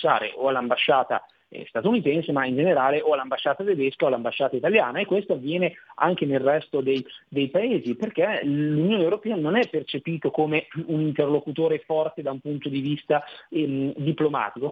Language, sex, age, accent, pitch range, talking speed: Italian, male, 30-49, native, 135-180 Hz, 155 wpm